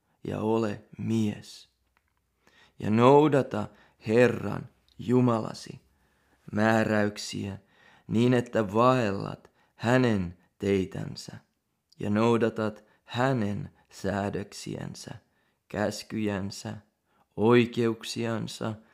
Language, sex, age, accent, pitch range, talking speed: Finnish, male, 30-49, native, 105-120 Hz, 60 wpm